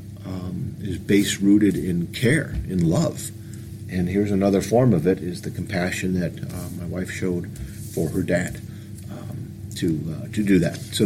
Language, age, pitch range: English, 50-69, 100-115 Hz